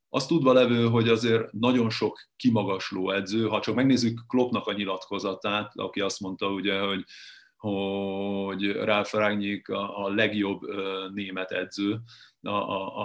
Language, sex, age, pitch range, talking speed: Hungarian, male, 30-49, 100-110 Hz, 120 wpm